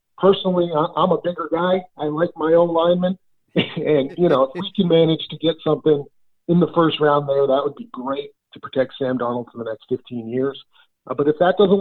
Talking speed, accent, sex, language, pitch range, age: 220 wpm, American, male, English, 130-170 Hz, 40-59